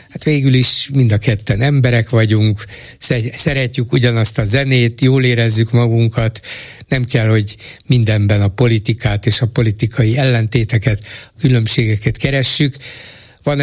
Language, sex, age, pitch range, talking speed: Hungarian, male, 60-79, 110-130 Hz, 130 wpm